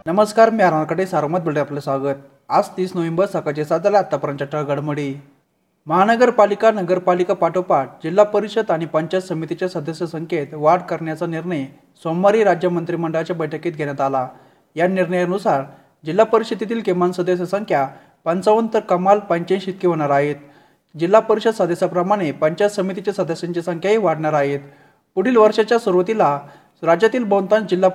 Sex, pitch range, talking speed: male, 155-200 Hz, 125 wpm